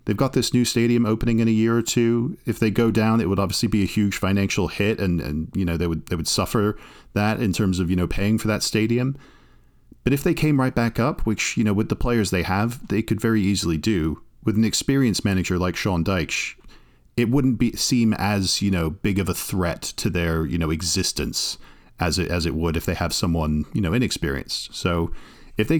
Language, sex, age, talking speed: English, male, 40-59, 235 wpm